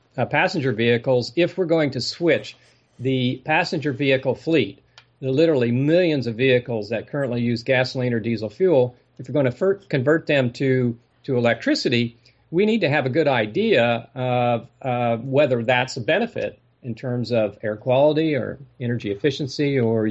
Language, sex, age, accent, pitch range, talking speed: English, male, 50-69, American, 120-145 Hz, 165 wpm